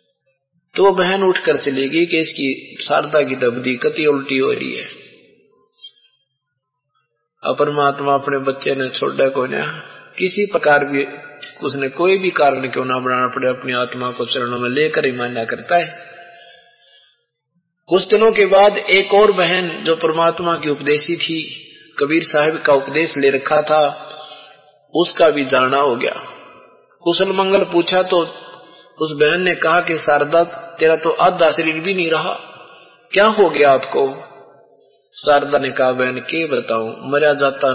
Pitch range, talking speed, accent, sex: 135-170 Hz, 140 wpm, native, male